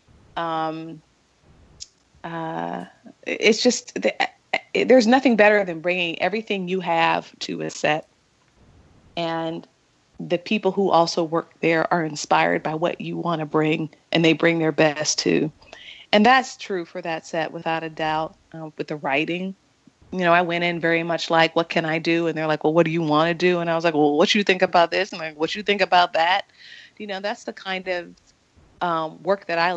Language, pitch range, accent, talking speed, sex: English, 155-180 Hz, American, 200 wpm, female